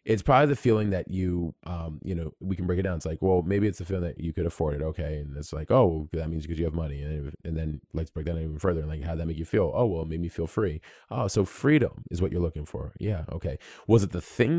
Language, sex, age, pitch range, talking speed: English, male, 30-49, 85-115 Hz, 305 wpm